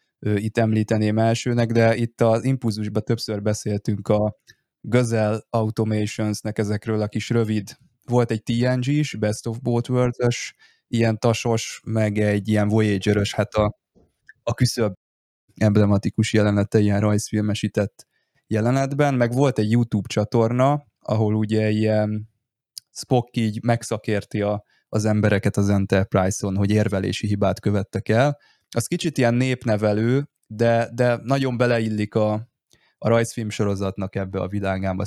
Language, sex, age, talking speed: Hungarian, male, 20-39, 125 wpm